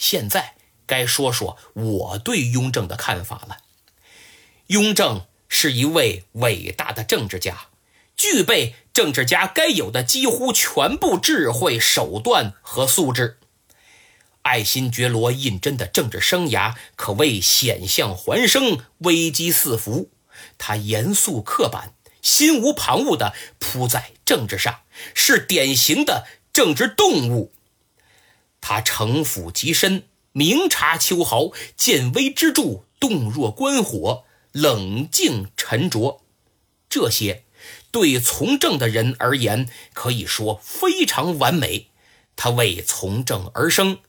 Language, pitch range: Chinese, 115-190 Hz